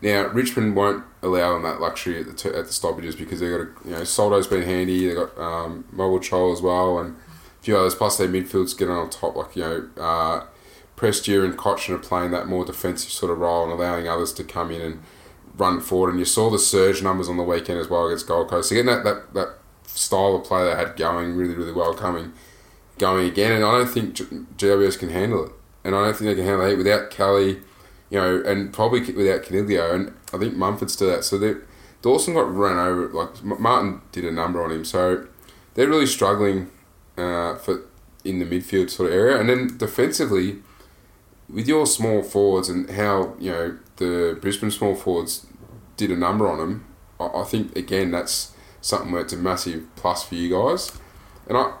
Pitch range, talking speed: 85-100 Hz, 210 wpm